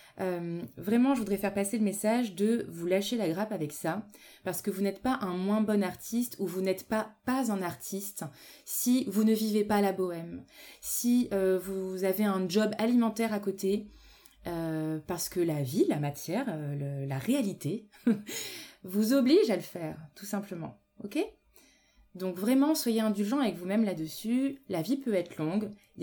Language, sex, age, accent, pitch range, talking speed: French, female, 20-39, French, 175-215 Hz, 180 wpm